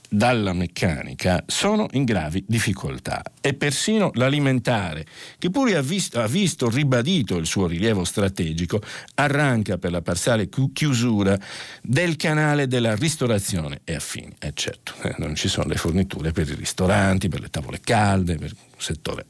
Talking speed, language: 150 wpm, Italian